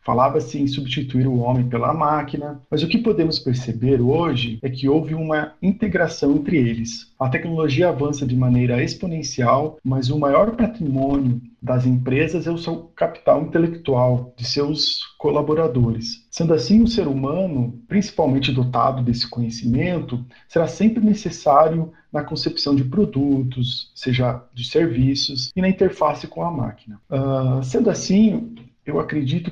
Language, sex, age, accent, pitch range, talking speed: Portuguese, male, 50-69, Brazilian, 125-165 Hz, 140 wpm